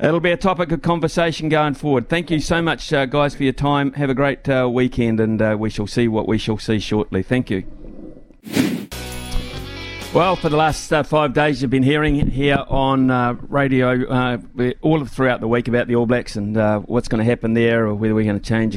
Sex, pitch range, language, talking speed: male, 110-130 Hz, English, 225 wpm